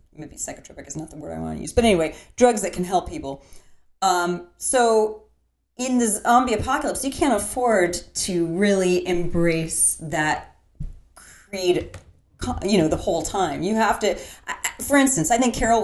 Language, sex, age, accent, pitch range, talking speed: English, female, 30-49, American, 165-235 Hz, 165 wpm